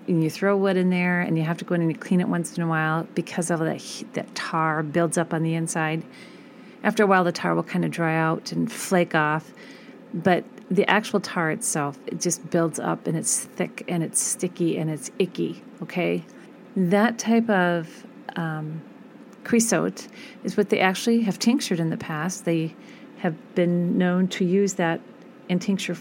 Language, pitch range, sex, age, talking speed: English, 165-215 Hz, female, 40-59, 200 wpm